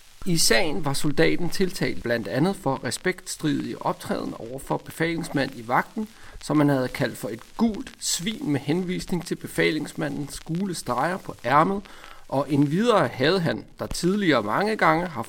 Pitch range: 135-180 Hz